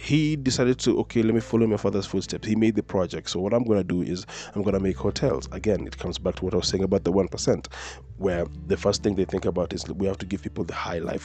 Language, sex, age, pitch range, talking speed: English, male, 20-39, 85-105 Hz, 295 wpm